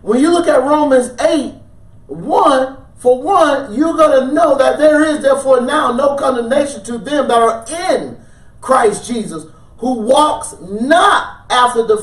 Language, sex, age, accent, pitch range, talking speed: English, male, 30-49, American, 250-325 Hz, 155 wpm